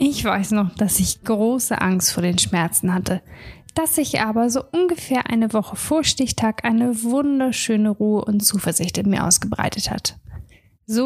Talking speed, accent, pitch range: 165 wpm, German, 205-255 Hz